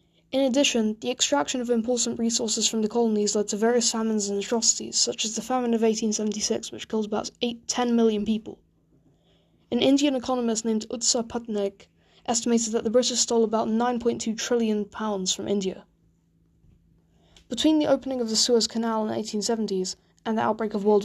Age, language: 10-29, English